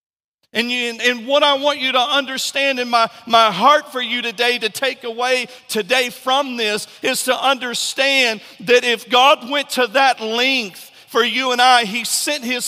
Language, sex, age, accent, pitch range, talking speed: English, male, 40-59, American, 225-270 Hz, 185 wpm